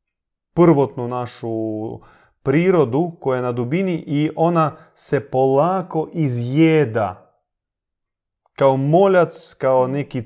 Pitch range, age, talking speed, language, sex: 120-160 Hz, 30-49, 95 wpm, Croatian, male